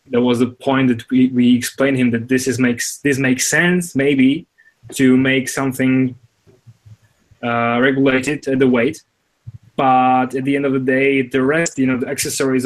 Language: English